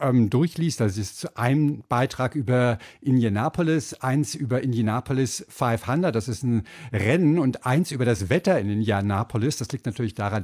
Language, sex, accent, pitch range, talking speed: German, male, German, 115-150 Hz, 155 wpm